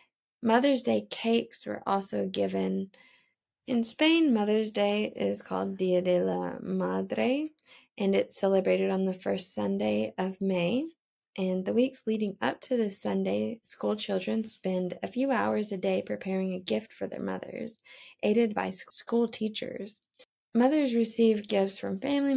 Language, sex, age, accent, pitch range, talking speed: English, female, 20-39, American, 185-235 Hz, 150 wpm